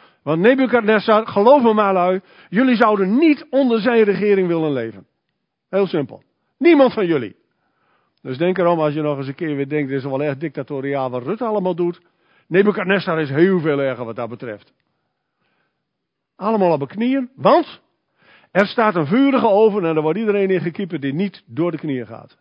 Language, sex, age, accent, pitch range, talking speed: Dutch, male, 50-69, Dutch, 155-215 Hz, 180 wpm